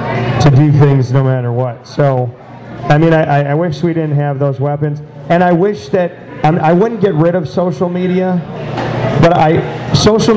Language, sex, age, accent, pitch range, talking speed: English, male, 40-59, American, 145-180 Hz, 180 wpm